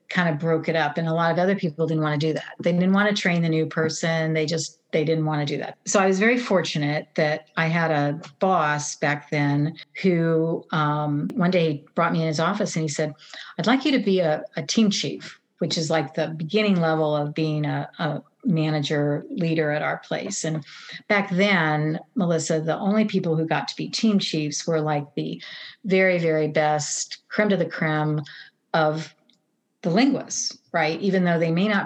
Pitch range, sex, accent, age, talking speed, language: 155-185 Hz, female, American, 50-69, 210 wpm, English